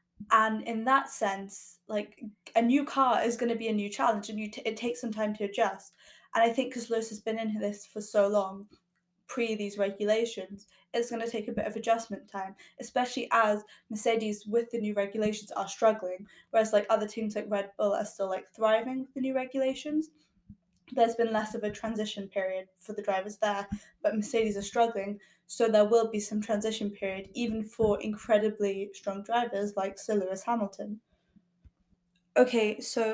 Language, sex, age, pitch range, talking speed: English, female, 10-29, 205-230 Hz, 190 wpm